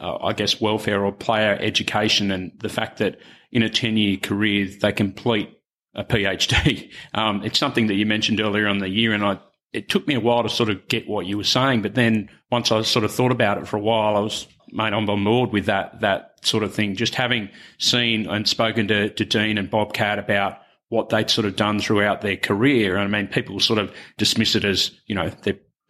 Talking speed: 230 wpm